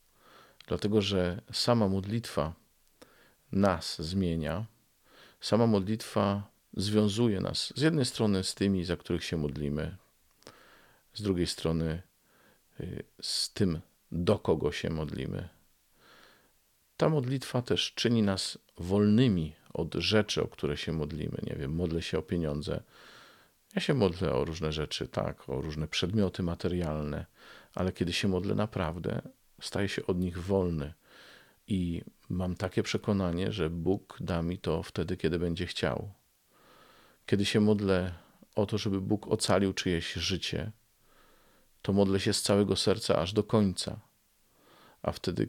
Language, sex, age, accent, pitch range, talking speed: Polish, male, 50-69, native, 85-105 Hz, 135 wpm